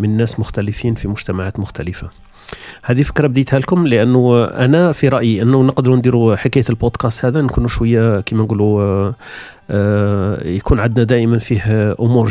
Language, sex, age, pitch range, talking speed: Arabic, male, 40-59, 110-125 Hz, 140 wpm